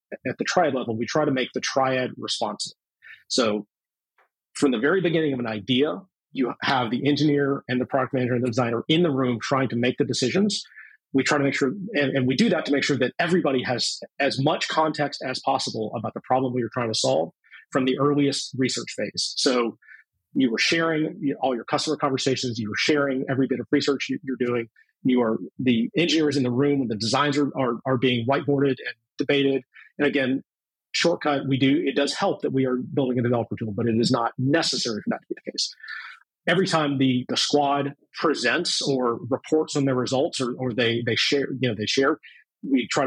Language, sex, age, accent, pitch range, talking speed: English, male, 30-49, American, 125-145 Hz, 210 wpm